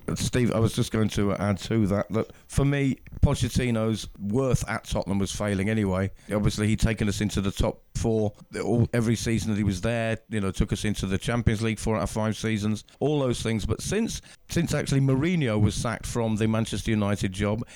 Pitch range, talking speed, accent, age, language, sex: 105-120 Hz, 210 wpm, British, 50-69, English, male